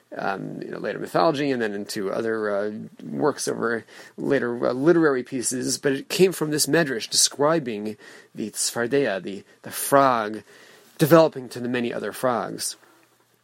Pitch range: 130-180 Hz